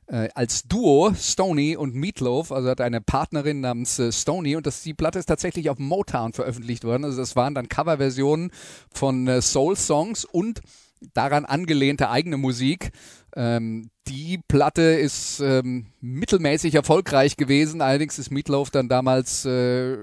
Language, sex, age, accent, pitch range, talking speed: German, male, 30-49, German, 125-150 Hz, 150 wpm